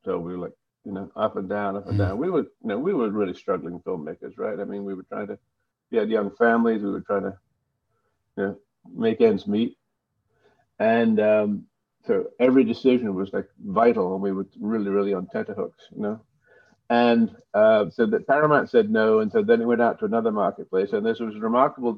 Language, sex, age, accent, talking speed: English, male, 50-69, American, 215 wpm